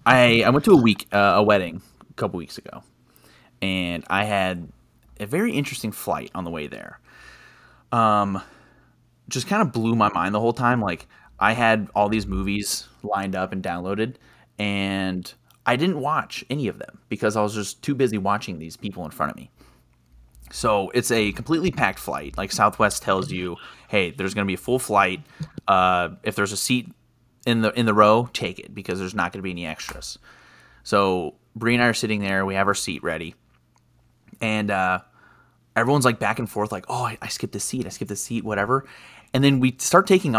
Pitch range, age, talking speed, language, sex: 95-120 Hz, 30-49, 205 wpm, English, male